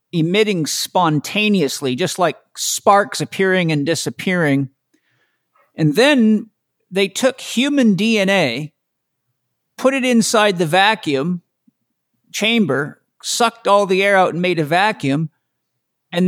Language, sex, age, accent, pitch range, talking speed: English, male, 50-69, American, 160-205 Hz, 110 wpm